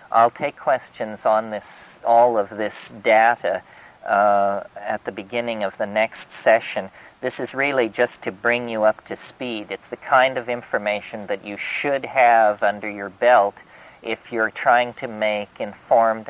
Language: English